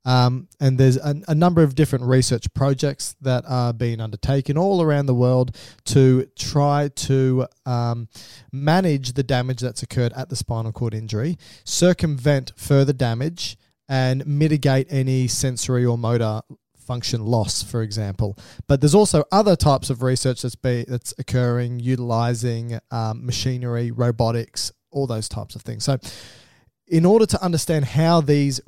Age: 20-39